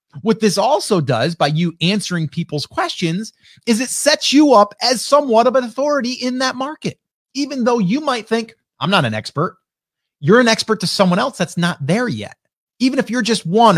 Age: 30-49